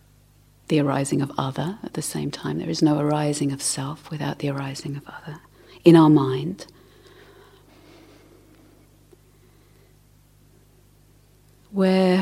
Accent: British